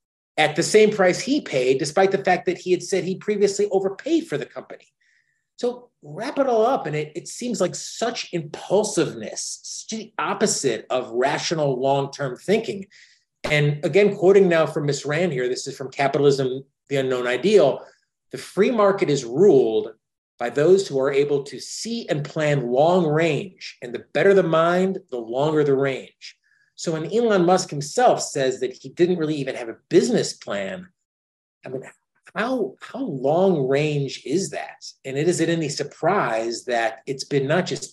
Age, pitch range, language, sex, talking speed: 30-49, 135-195 Hz, English, male, 175 wpm